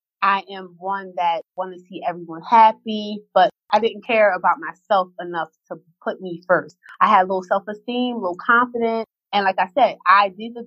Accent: American